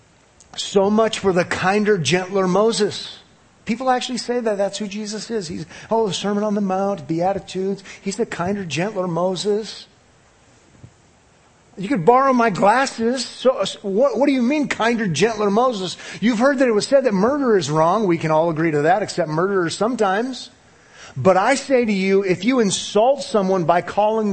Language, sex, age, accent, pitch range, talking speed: English, male, 40-59, American, 145-220 Hz, 180 wpm